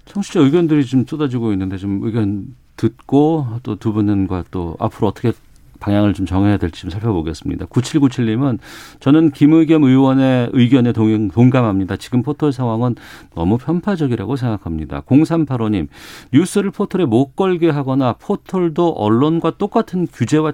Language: Korean